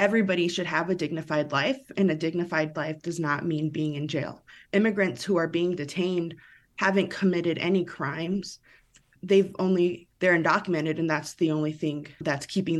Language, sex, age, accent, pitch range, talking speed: English, female, 20-39, American, 165-190 Hz, 185 wpm